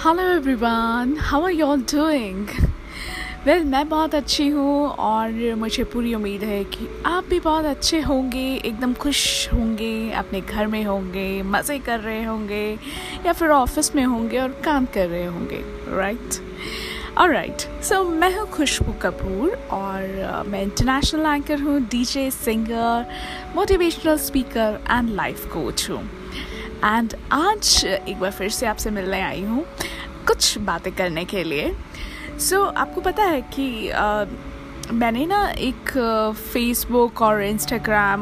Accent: native